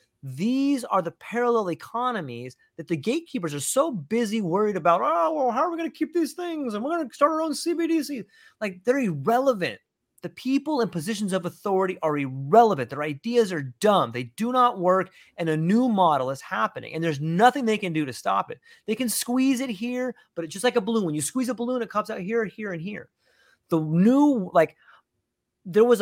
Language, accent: English, American